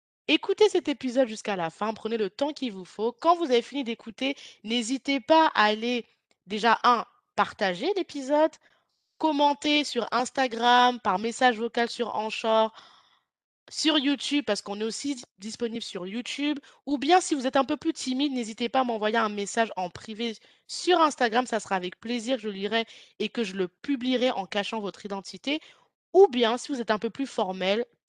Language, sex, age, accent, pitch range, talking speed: French, female, 20-39, French, 215-285 Hz, 185 wpm